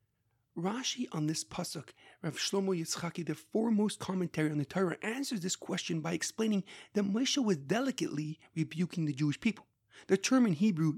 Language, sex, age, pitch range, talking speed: English, male, 30-49, 160-205 Hz, 165 wpm